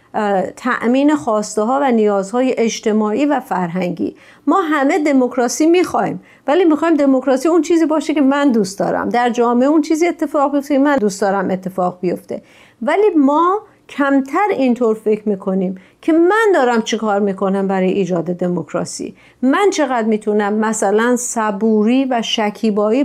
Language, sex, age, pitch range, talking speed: Persian, female, 50-69, 210-270 Hz, 145 wpm